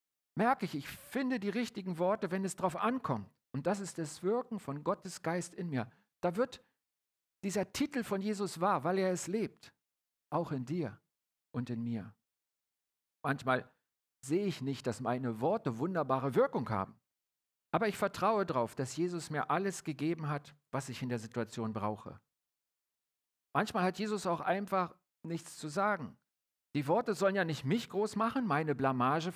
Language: German